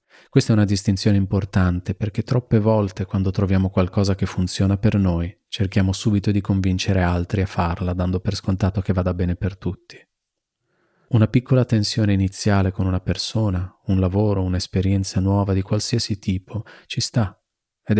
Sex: male